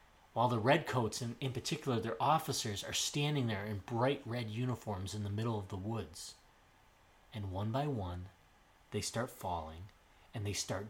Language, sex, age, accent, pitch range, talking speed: English, male, 30-49, American, 110-145 Hz, 170 wpm